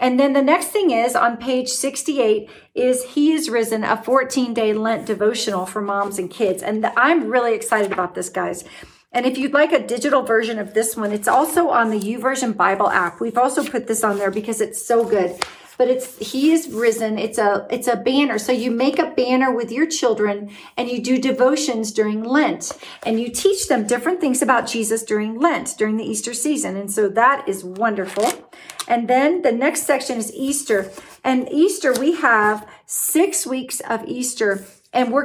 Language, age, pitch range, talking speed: English, 40-59, 220-275 Hz, 195 wpm